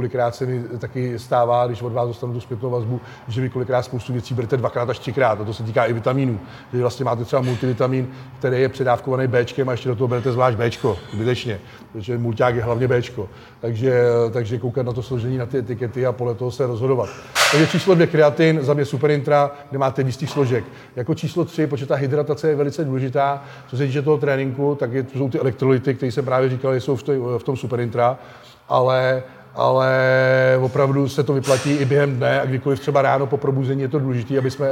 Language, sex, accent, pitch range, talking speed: Czech, male, native, 125-140 Hz, 205 wpm